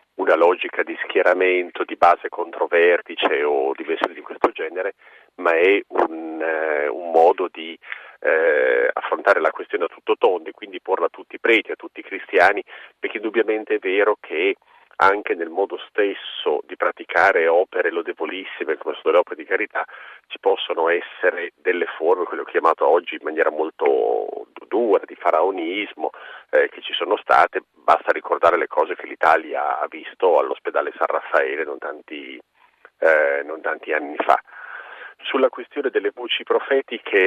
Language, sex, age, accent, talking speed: Italian, male, 40-59, native, 155 wpm